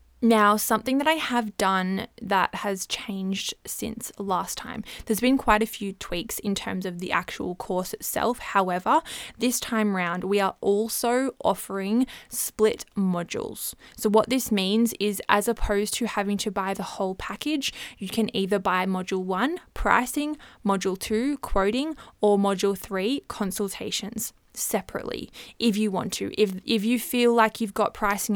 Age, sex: 20-39, female